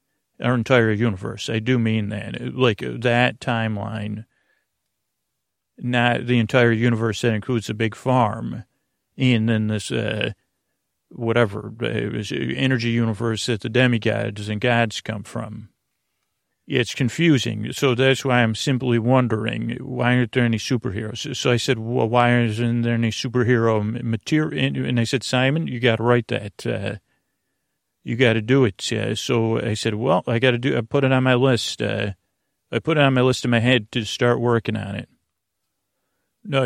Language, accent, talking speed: English, American, 170 wpm